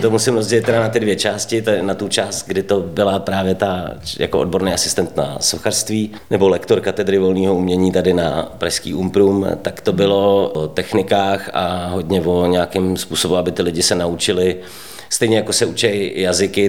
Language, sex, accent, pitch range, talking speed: Czech, male, native, 90-100 Hz, 180 wpm